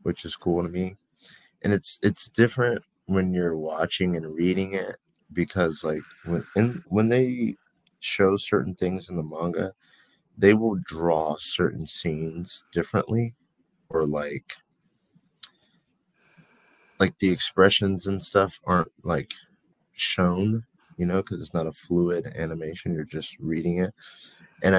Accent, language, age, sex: American, English, 30-49, male